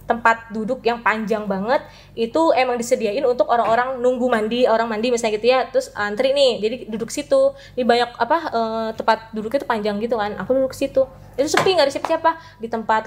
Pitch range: 210-270 Hz